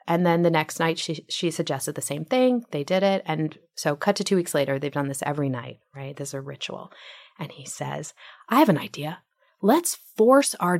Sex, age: female, 30-49